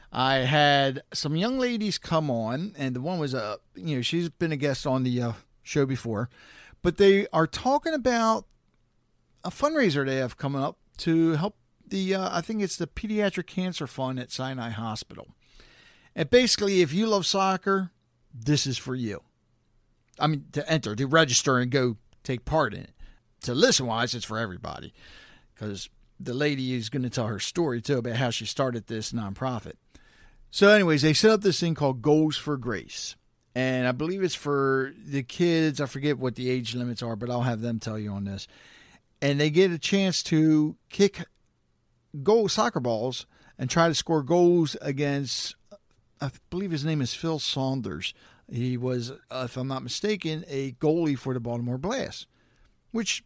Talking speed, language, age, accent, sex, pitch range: 185 wpm, English, 50-69, American, male, 125-180 Hz